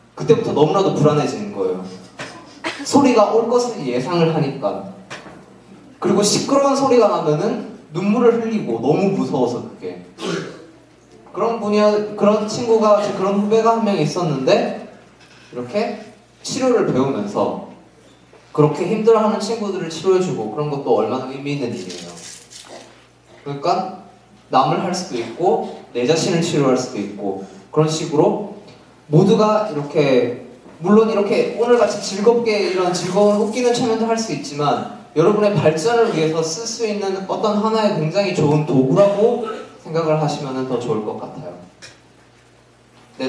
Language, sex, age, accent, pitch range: Korean, male, 20-39, native, 145-215 Hz